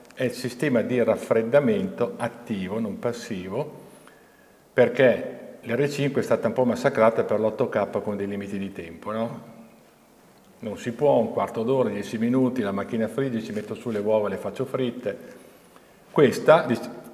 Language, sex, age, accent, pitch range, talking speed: Italian, male, 50-69, native, 105-130 Hz, 150 wpm